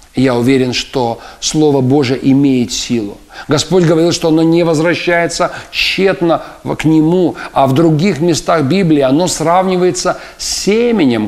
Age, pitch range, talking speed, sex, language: 50-69, 135-185 Hz, 135 wpm, male, Russian